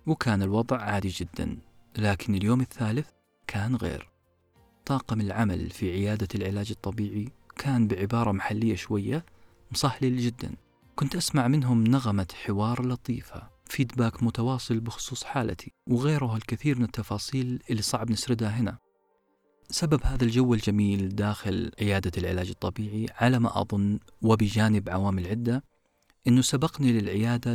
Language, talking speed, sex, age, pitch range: Arabic, 120 wpm, male, 40-59, 105-125 Hz